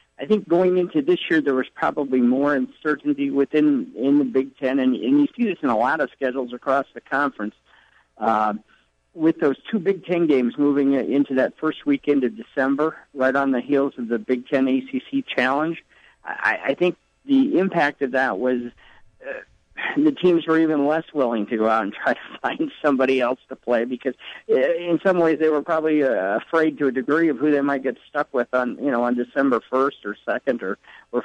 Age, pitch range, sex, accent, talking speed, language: 50-69, 130-160 Hz, male, American, 210 wpm, English